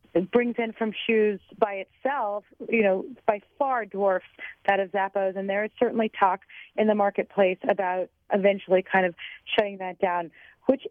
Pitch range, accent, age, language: 190-235 Hz, American, 30-49, English